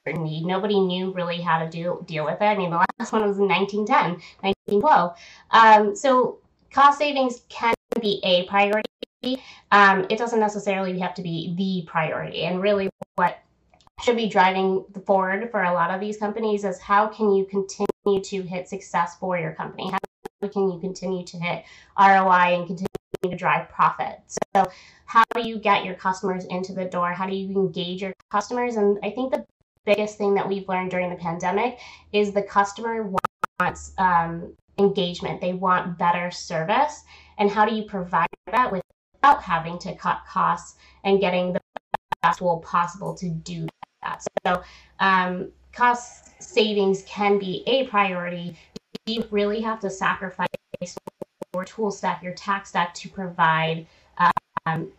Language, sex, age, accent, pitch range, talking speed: English, female, 20-39, American, 180-210 Hz, 165 wpm